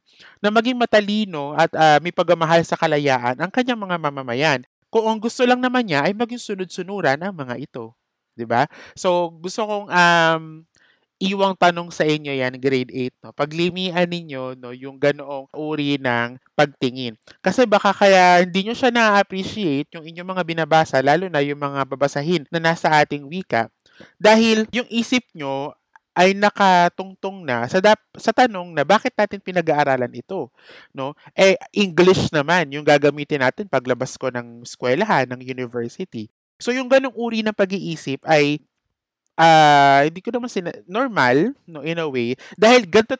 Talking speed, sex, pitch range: 160 wpm, male, 140-195 Hz